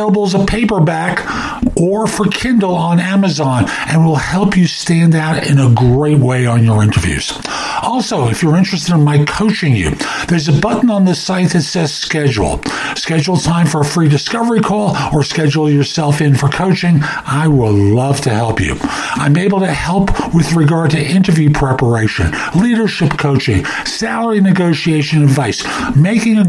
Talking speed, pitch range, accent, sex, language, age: 165 wpm, 145-185 Hz, American, male, English, 50-69